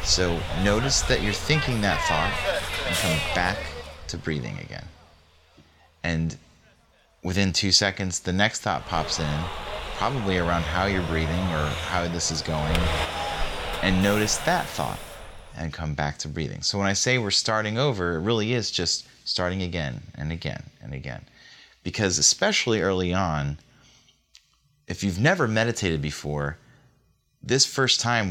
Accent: American